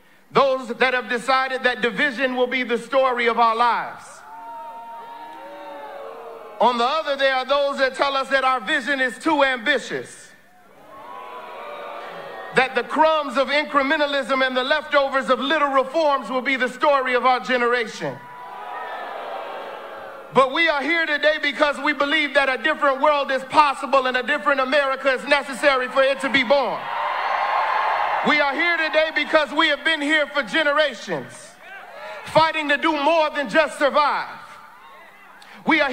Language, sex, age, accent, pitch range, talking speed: English, male, 50-69, American, 250-295 Hz, 150 wpm